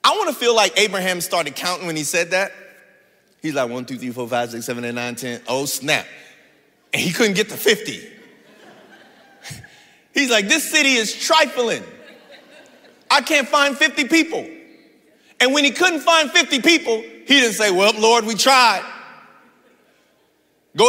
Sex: male